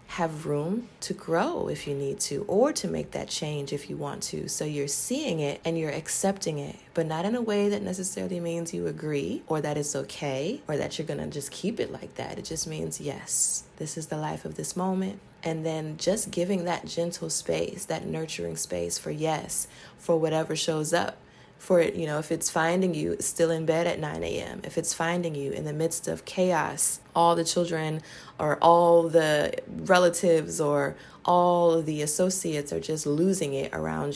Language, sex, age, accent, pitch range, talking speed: English, female, 20-39, American, 145-175 Hz, 205 wpm